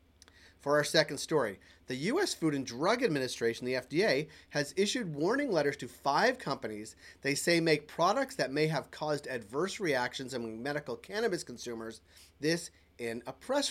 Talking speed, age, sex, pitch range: 160 wpm, 30-49, male, 120-165 Hz